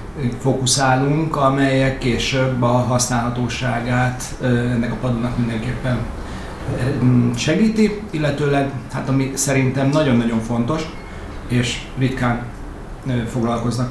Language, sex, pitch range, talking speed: Hungarian, male, 120-135 Hz, 80 wpm